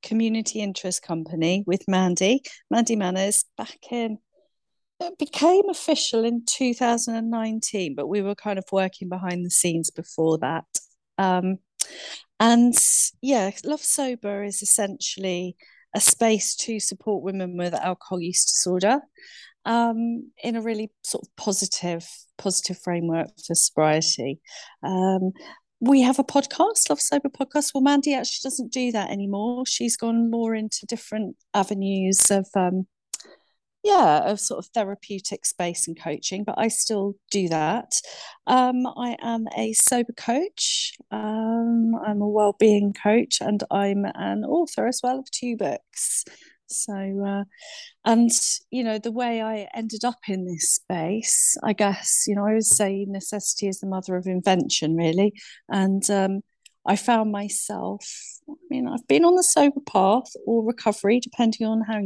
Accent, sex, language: British, female, English